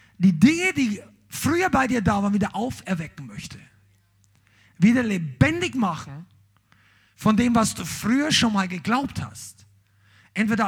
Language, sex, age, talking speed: German, male, 50-69, 135 wpm